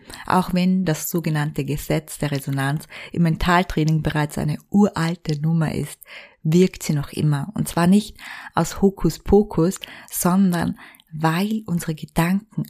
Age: 20-39